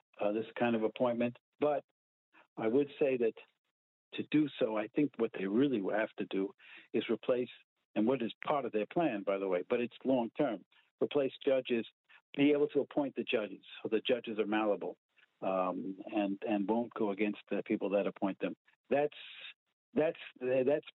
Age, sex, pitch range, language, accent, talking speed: 60-79, male, 110-145 Hz, English, American, 180 wpm